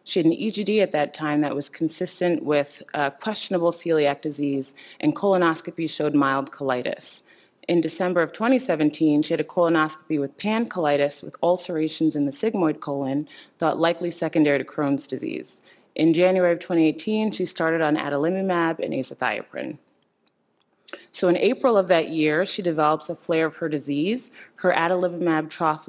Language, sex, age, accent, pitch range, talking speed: English, female, 30-49, American, 145-180 Hz, 160 wpm